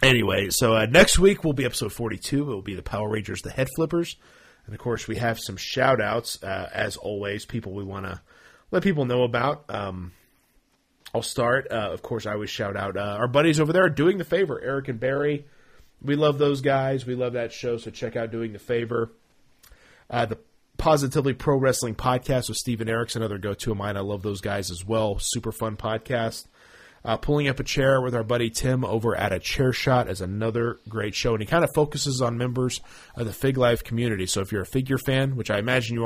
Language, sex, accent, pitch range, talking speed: English, male, American, 105-135 Hz, 225 wpm